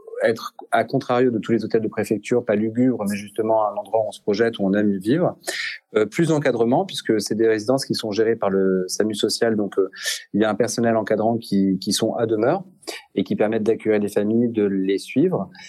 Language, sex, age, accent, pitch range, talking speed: French, male, 30-49, French, 100-120 Hz, 225 wpm